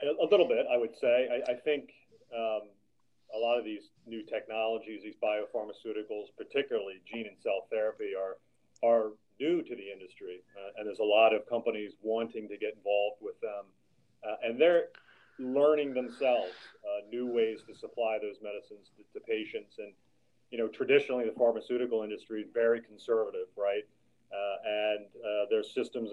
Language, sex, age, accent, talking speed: English, male, 40-59, American, 170 wpm